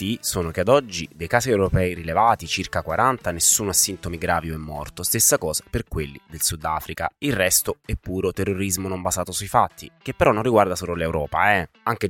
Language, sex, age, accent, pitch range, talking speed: Italian, male, 20-39, native, 85-110 Hz, 205 wpm